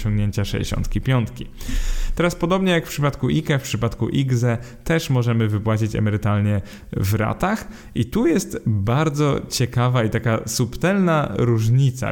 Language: Polish